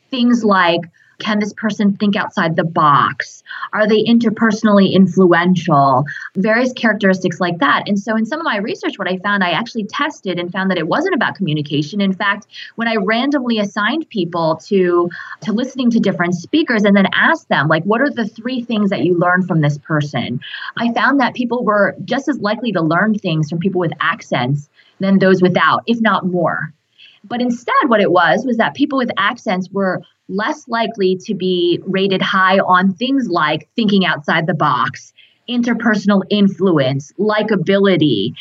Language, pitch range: English, 180-230 Hz